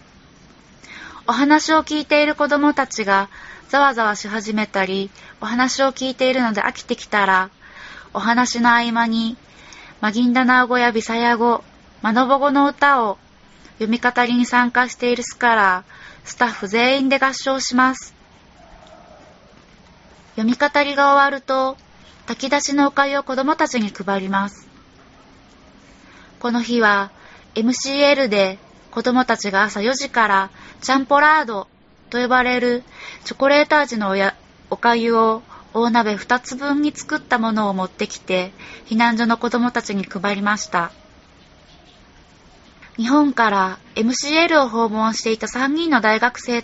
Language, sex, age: Japanese, female, 20-39